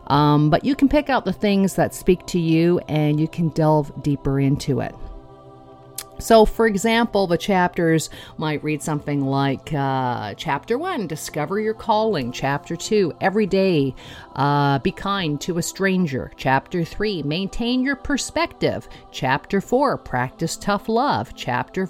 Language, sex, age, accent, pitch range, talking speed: English, female, 50-69, American, 150-225 Hz, 150 wpm